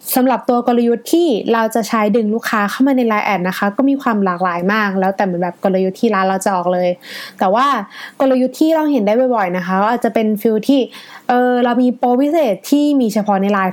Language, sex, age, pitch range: Thai, female, 20-39, 205-265 Hz